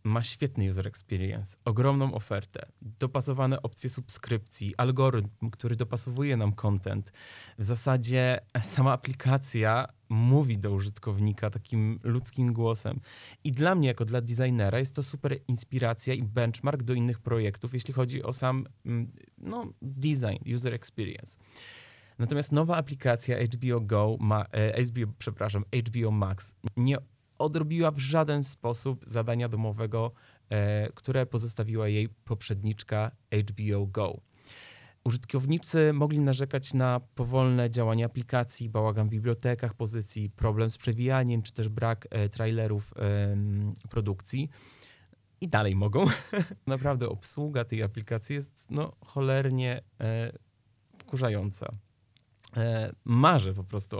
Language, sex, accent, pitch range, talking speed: Polish, male, native, 110-130 Hz, 110 wpm